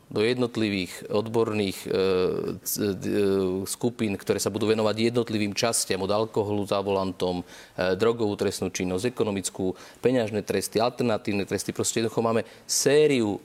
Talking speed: 140 wpm